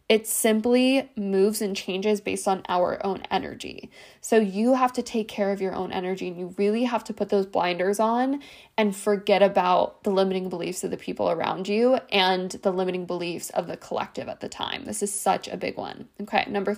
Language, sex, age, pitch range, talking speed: English, female, 10-29, 185-225 Hz, 205 wpm